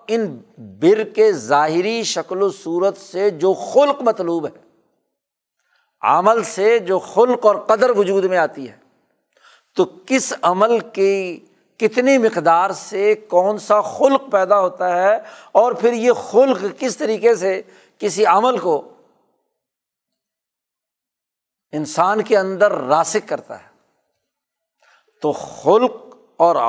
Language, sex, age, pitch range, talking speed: Urdu, male, 60-79, 175-245 Hz, 120 wpm